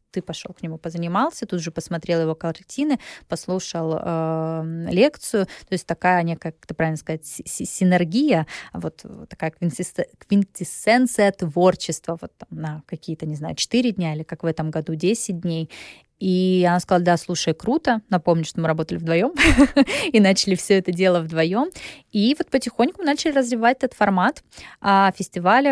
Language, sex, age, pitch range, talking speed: Russian, female, 20-39, 170-200 Hz, 160 wpm